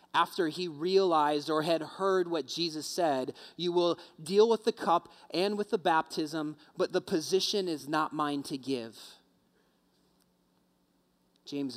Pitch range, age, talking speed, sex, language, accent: 135-180 Hz, 30-49, 145 wpm, male, English, American